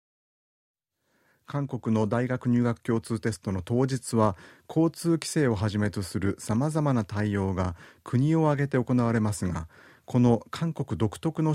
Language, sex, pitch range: Japanese, male, 100-135 Hz